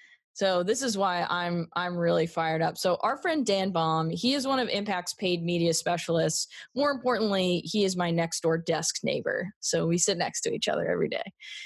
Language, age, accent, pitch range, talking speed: English, 20-39, American, 165-190 Hz, 205 wpm